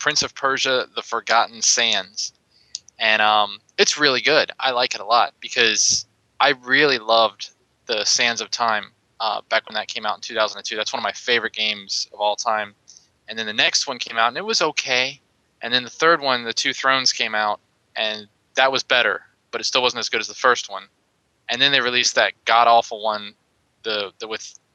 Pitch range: 105-125 Hz